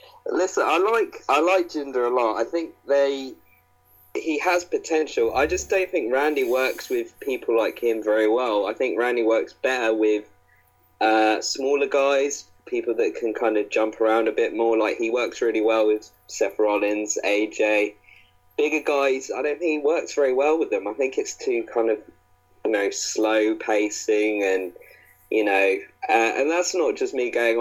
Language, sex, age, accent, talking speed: English, male, 20-39, British, 185 wpm